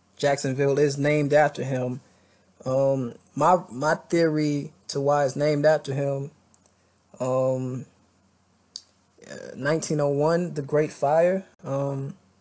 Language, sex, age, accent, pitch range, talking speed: English, male, 20-39, American, 105-150 Hz, 100 wpm